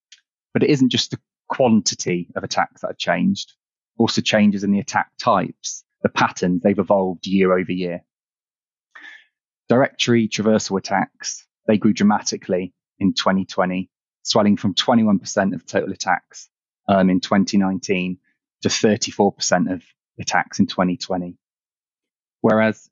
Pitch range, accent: 95-115 Hz, British